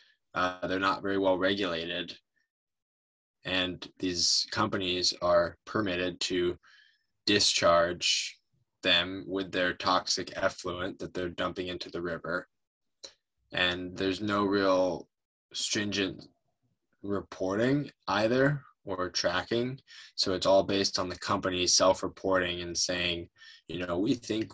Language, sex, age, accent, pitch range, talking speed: English, male, 10-29, American, 90-100 Hz, 115 wpm